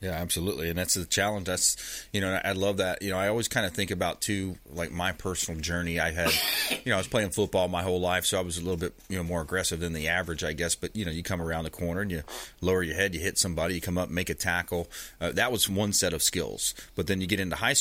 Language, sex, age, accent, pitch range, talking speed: English, male, 30-49, American, 80-95 Hz, 290 wpm